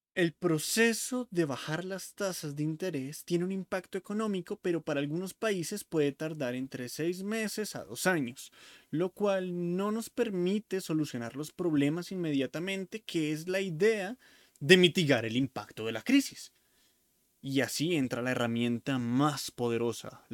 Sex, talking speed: male, 150 wpm